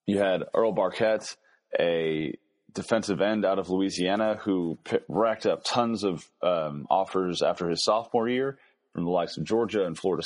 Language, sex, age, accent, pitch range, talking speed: English, male, 30-49, American, 85-105 Hz, 170 wpm